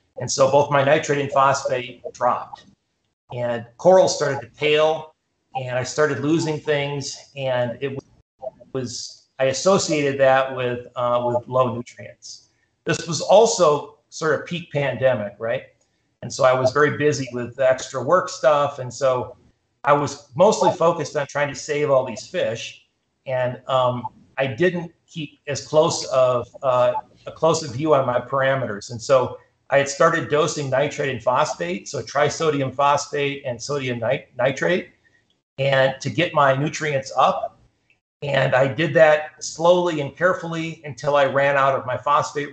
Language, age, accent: English, 40-59, American